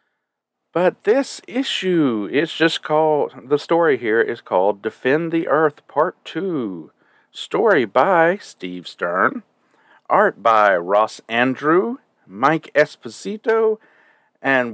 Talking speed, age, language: 110 wpm, 40-59, English